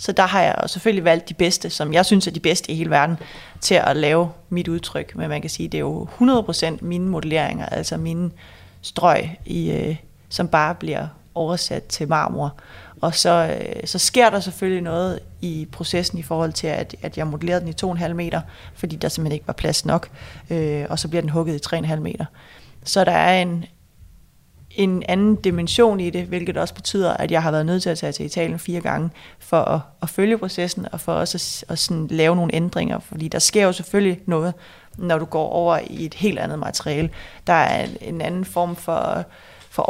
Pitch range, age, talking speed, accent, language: 160-180 Hz, 30-49, 205 wpm, native, Danish